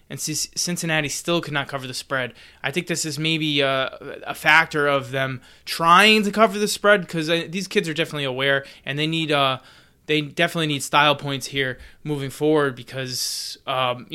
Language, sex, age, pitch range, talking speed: English, male, 20-39, 140-165 Hz, 190 wpm